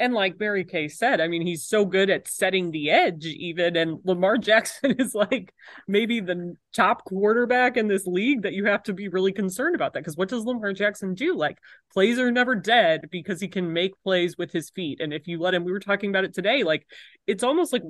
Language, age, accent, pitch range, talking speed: English, 30-49, American, 175-225 Hz, 235 wpm